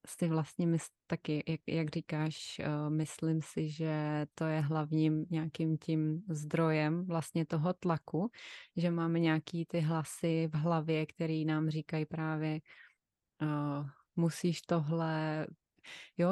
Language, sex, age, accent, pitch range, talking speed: Czech, female, 20-39, native, 155-180 Hz, 125 wpm